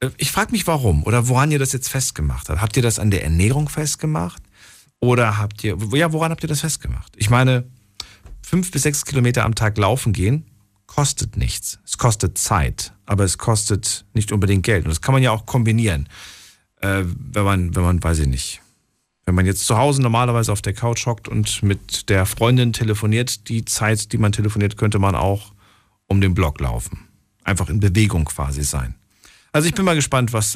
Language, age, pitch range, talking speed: German, 40-59, 95-130 Hz, 195 wpm